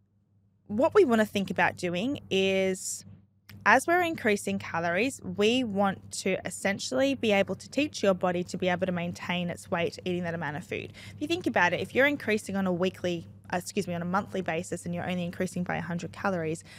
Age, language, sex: 20-39, English, female